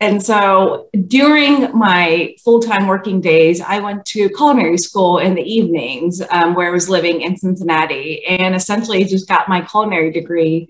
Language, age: English, 30-49